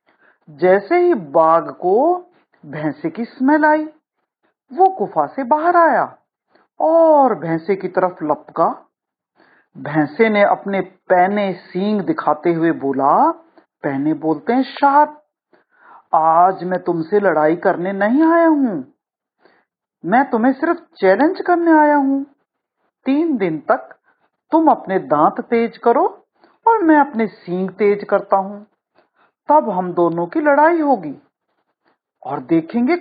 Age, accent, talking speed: 50-69, native, 125 wpm